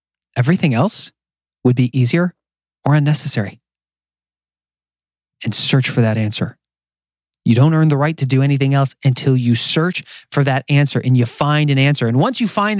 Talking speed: 170 wpm